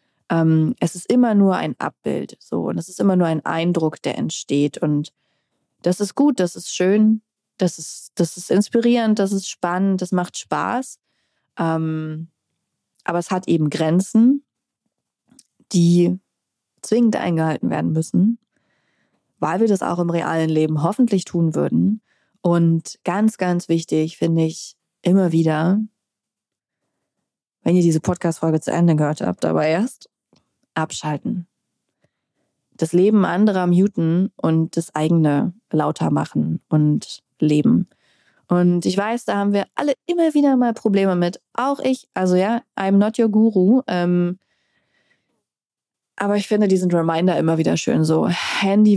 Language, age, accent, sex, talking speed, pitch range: German, 20-39, German, female, 145 wpm, 160-205 Hz